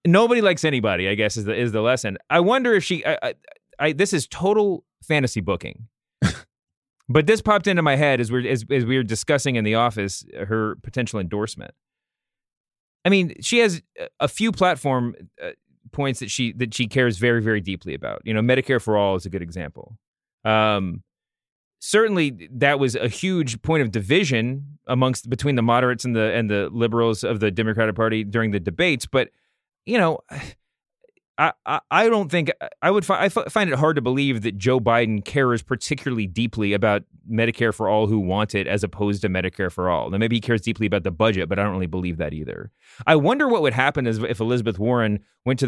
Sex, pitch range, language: male, 105-135 Hz, English